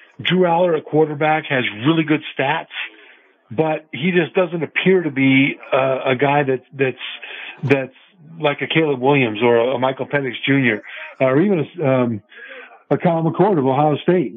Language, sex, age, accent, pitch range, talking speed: English, male, 50-69, American, 125-155 Hz, 165 wpm